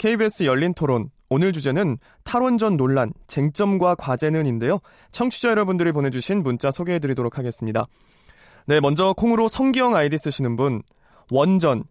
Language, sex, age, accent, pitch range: Korean, male, 20-39, native, 135-200 Hz